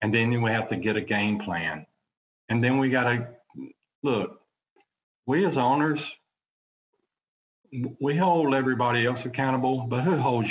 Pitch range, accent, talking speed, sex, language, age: 110-130 Hz, American, 150 wpm, male, English, 50-69